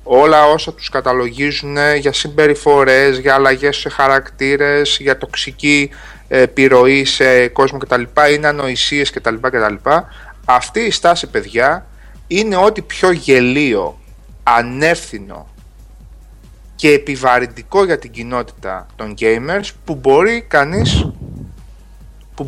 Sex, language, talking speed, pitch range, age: male, Greek, 100 wpm, 135-195 Hz, 30-49